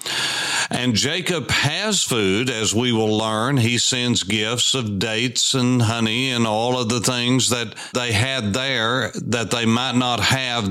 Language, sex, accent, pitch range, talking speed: English, male, American, 110-135 Hz, 165 wpm